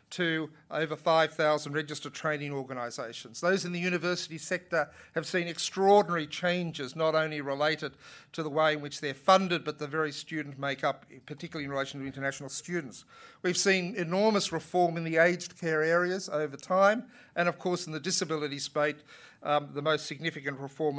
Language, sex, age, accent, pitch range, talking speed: English, male, 50-69, Australian, 150-180 Hz, 170 wpm